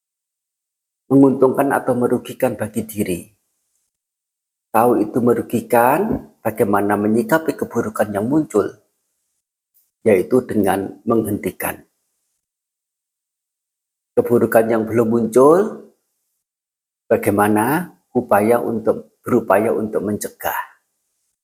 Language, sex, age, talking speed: Indonesian, male, 50-69, 75 wpm